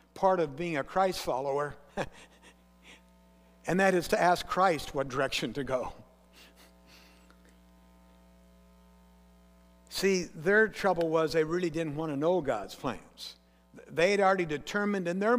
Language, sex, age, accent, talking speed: English, male, 60-79, American, 135 wpm